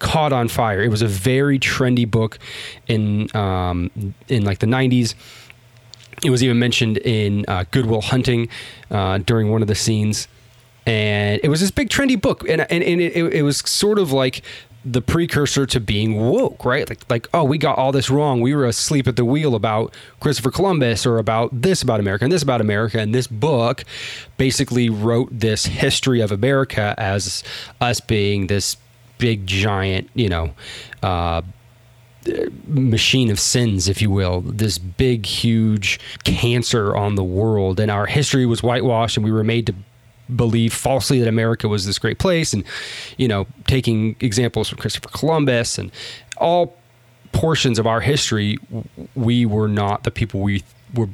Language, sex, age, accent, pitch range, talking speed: English, male, 20-39, American, 105-130 Hz, 170 wpm